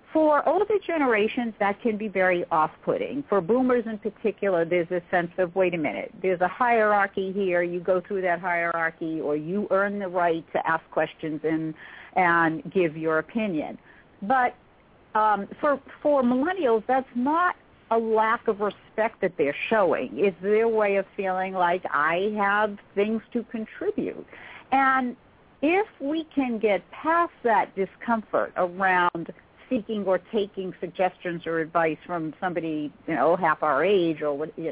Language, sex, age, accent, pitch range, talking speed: English, female, 50-69, American, 175-230 Hz, 155 wpm